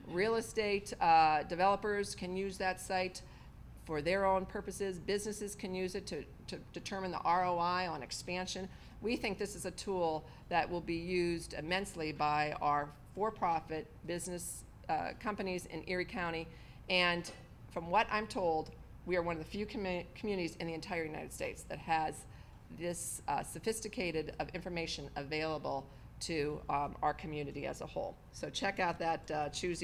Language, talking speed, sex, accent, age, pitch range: English, 165 wpm, female, American, 40-59, 155-195 Hz